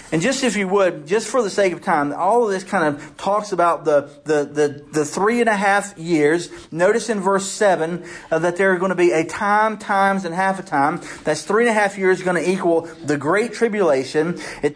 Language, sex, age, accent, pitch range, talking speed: English, male, 40-59, American, 145-185 Hz, 235 wpm